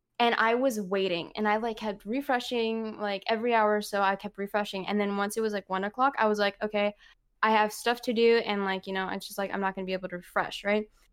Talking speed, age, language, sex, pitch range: 270 wpm, 10-29, English, female, 205-260 Hz